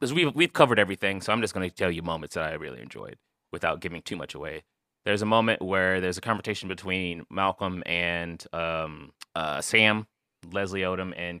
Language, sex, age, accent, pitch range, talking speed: English, male, 20-39, American, 95-120 Hz, 200 wpm